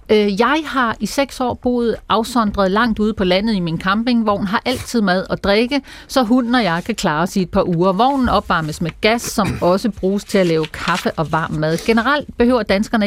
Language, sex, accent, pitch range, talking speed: Danish, female, native, 185-245 Hz, 215 wpm